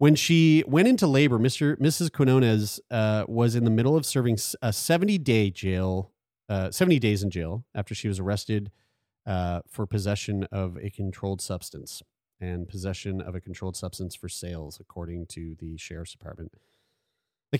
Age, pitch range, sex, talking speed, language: 30-49, 100-125 Hz, male, 165 wpm, English